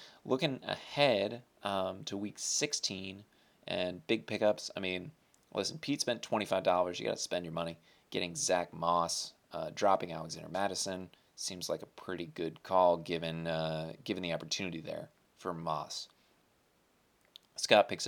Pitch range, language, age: 85-105 Hz, English, 20-39